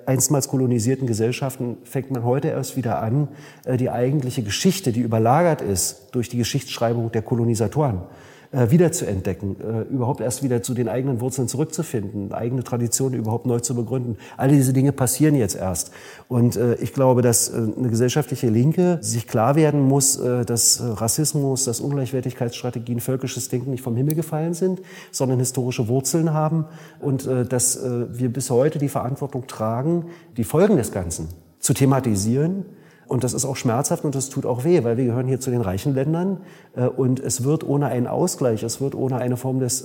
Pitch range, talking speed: 120-145 Hz, 170 wpm